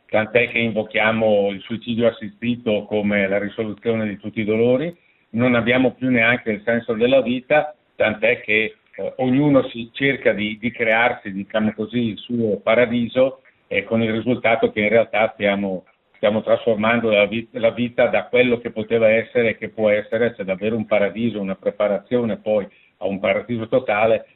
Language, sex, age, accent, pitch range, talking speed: Italian, male, 50-69, native, 105-115 Hz, 175 wpm